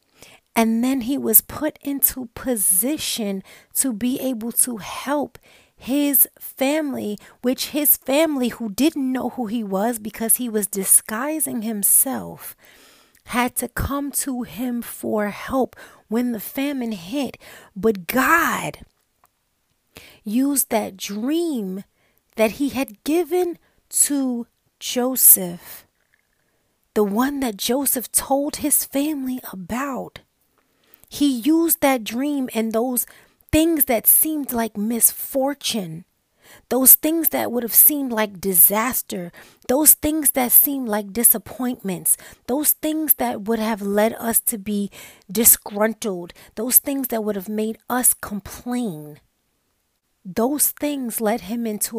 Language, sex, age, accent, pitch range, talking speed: English, female, 40-59, American, 215-275 Hz, 120 wpm